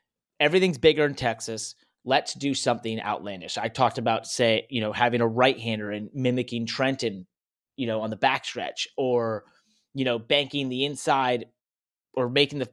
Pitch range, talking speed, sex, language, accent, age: 115-145 Hz, 165 wpm, male, English, American, 30-49